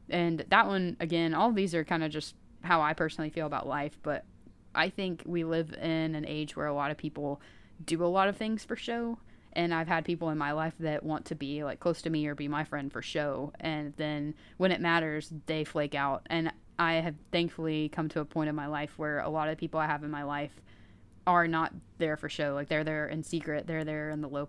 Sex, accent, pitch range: female, American, 145-170 Hz